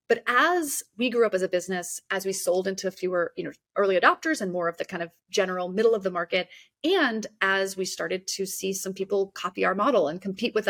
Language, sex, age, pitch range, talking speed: English, female, 30-49, 180-235 Hz, 235 wpm